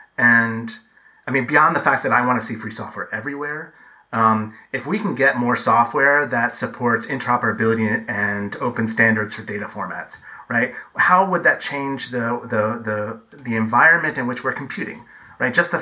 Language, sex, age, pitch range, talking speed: English, male, 30-49, 115-160 Hz, 180 wpm